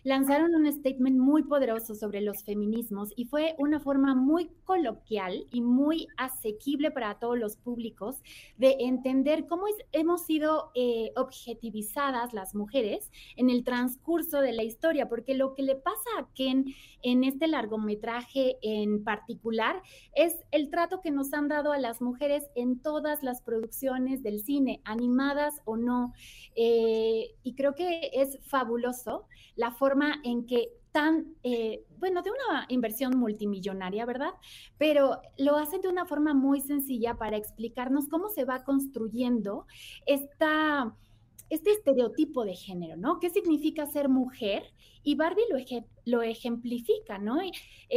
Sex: female